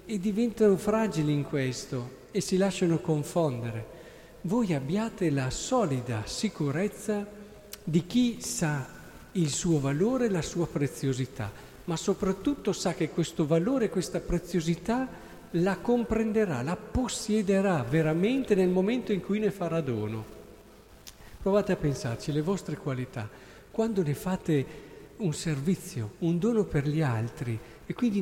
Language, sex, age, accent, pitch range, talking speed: Italian, male, 50-69, native, 145-200 Hz, 130 wpm